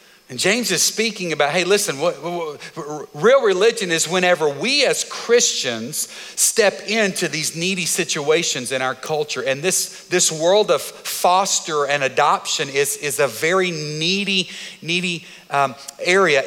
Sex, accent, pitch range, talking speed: male, American, 145-190 Hz, 150 wpm